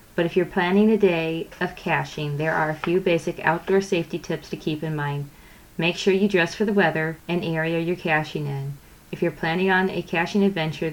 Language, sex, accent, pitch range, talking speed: English, female, American, 155-185 Hz, 215 wpm